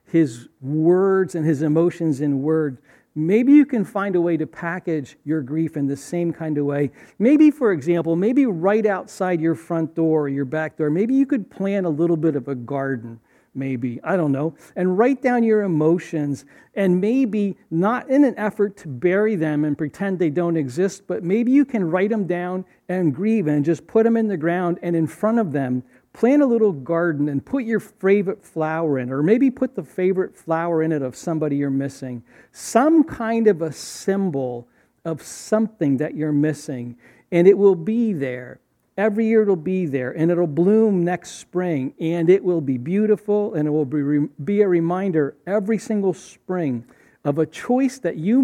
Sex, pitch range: male, 150-200 Hz